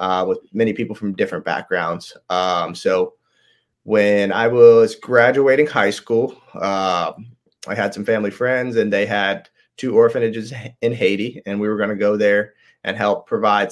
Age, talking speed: 30-49, 165 wpm